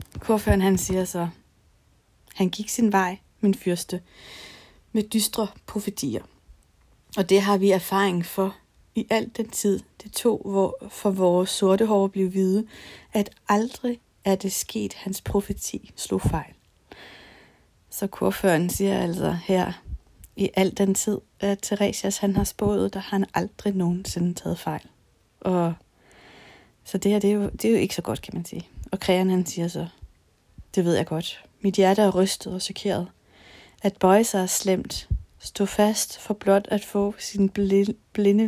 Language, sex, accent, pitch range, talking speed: Danish, female, native, 180-210 Hz, 165 wpm